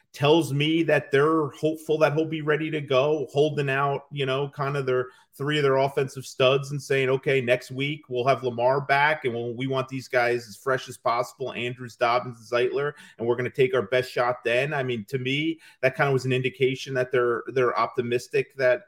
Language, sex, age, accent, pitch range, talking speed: English, male, 40-59, American, 125-150 Hz, 220 wpm